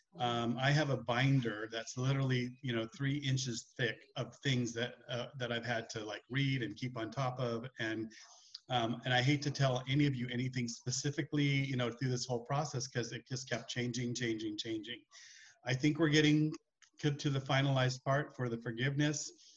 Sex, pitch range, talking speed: male, 120-145 Hz, 195 wpm